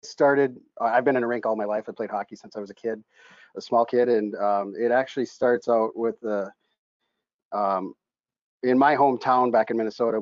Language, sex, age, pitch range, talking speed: English, male, 40-59, 105-130 Hz, 210 wpm